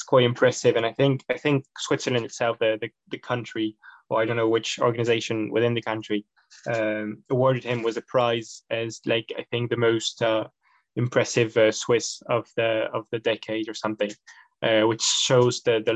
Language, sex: English, male